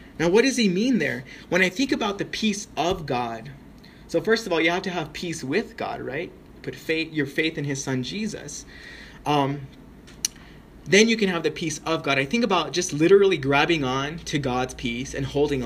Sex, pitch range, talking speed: male, 135-180 Hz, 210 wpm